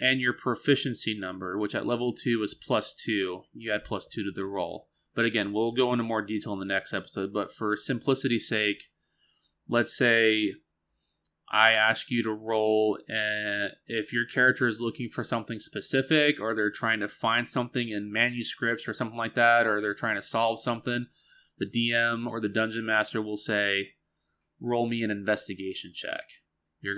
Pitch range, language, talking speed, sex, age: 105-120 Hz, English, 180 wpm, male, 20-39